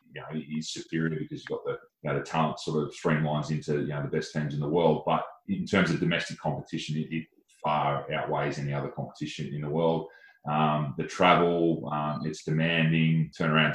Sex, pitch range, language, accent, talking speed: male, 75-80 Hz, English, Australian, 205 wpm